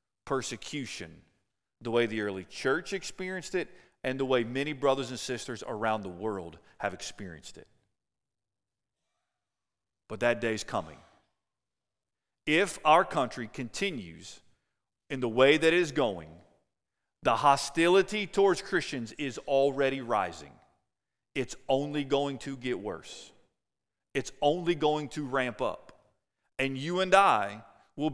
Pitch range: 130-195 Hz